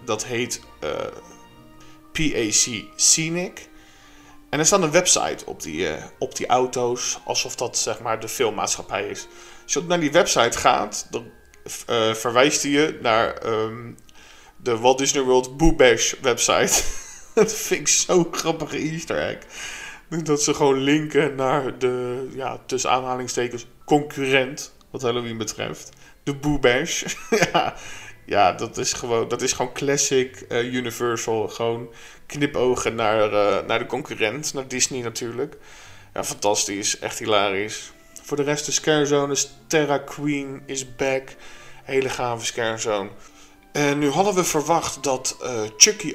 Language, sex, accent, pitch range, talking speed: Dutch, male, Dutch, 120-150 Hz, 140 wpm